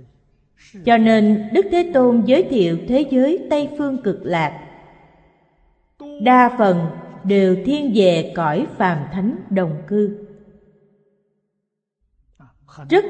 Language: Vietnamese